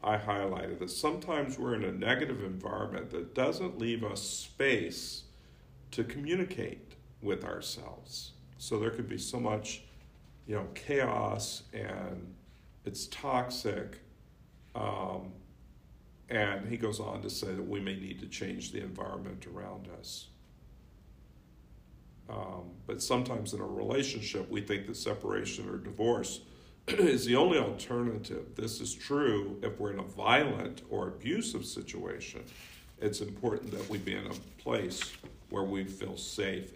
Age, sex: 50-69, male